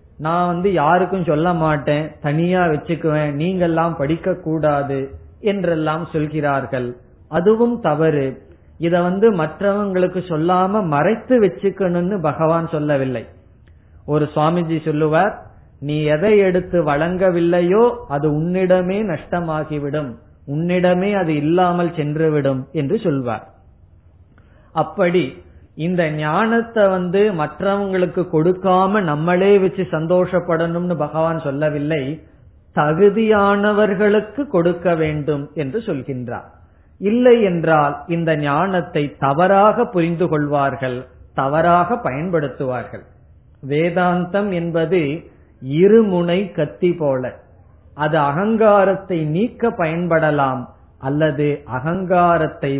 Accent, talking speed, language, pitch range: native, 85 wpm, Tamil, 145-185 Hz